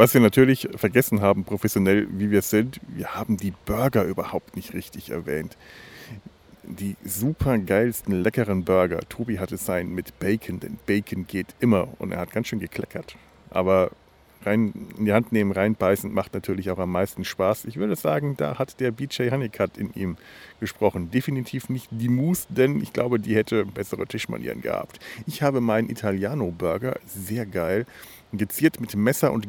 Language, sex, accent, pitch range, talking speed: German, male, German, 100-135 Hz, 170 wpm